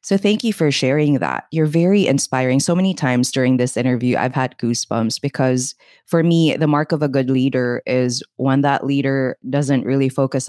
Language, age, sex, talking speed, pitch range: English, 20-39, female, 195 wpm, 125-150 Hz